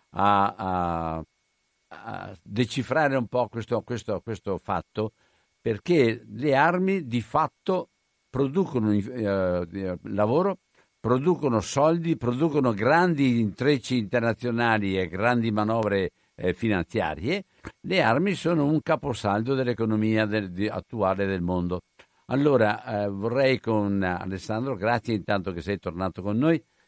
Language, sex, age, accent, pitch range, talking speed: Italian, male, 60-79, native, 100-130 Hz, 105 wpm